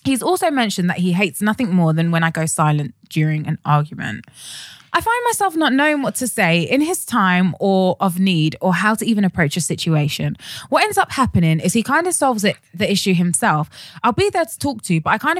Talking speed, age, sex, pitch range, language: 230 wpm, 20-39, female, 160-230 Hz, English